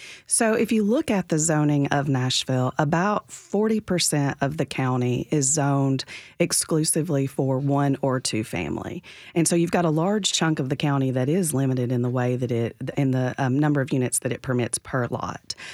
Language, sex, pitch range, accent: English, female, 135-165 Hz, American